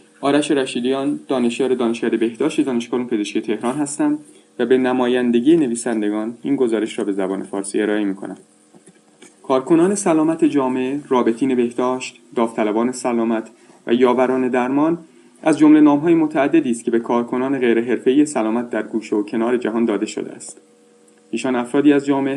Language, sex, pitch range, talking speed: Persian, male, 115-145 Hz, 145 wpm